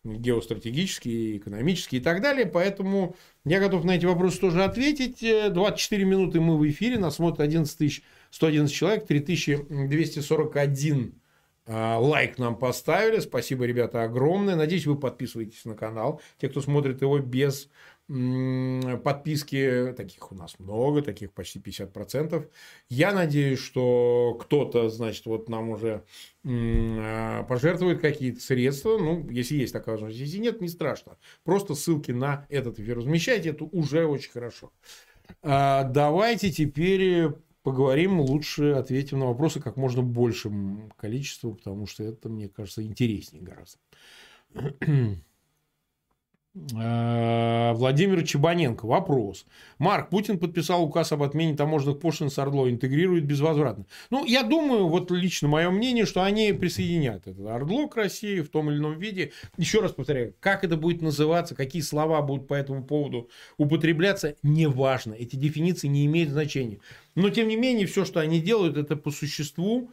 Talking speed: 135 wpm